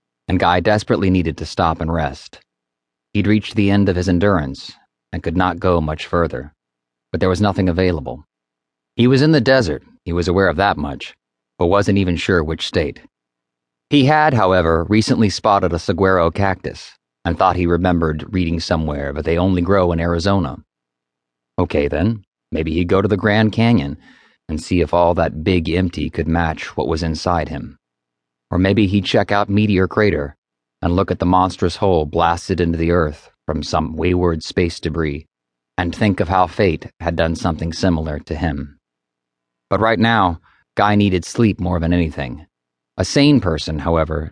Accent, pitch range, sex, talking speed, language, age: American, 75-100 Hz, male, 175 wpm, English, 30-49